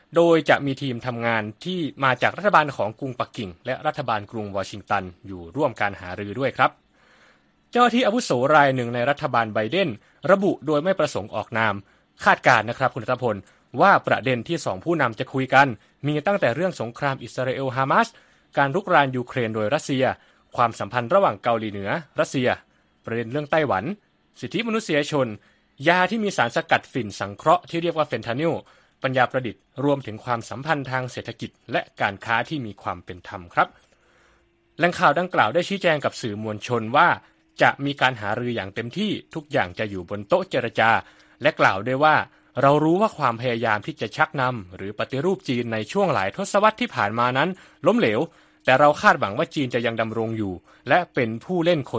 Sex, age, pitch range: male, 20-39, 110-155 Hz